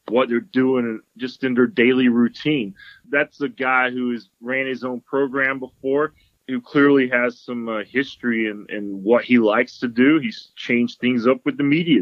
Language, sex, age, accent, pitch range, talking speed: English, male, 30-49, American, 120-140 Hz, 185 wpm